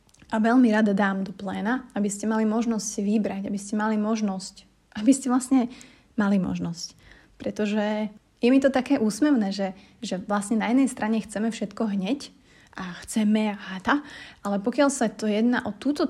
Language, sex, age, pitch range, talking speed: Slovak, female, 30-49, 200-235 Hz, 170 wpm